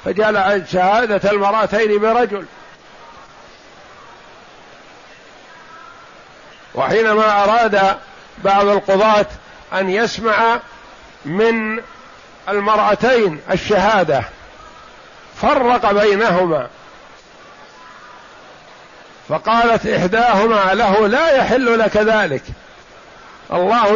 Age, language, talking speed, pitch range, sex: 50-69, Arabic, 60 wpm, 200-235 Hz, male